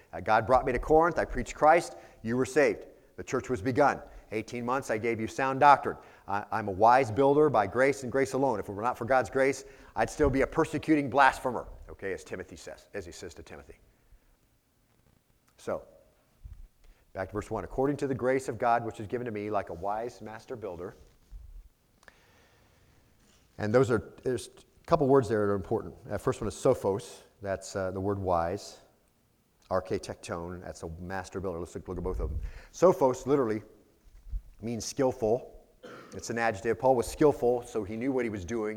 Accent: American